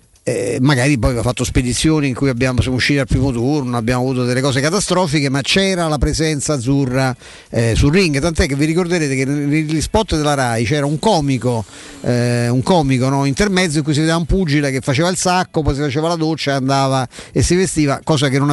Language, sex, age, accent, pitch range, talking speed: Italian, male, 50-69, native, 125-155 Hz, 215 wpm